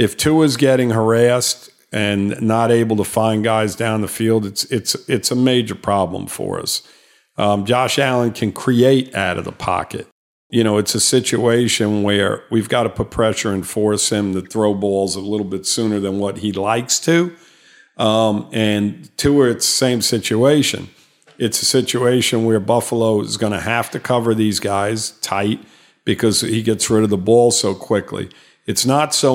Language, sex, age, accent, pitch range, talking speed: English, male, 50-69, American, 105-125 Hz, 180 wpm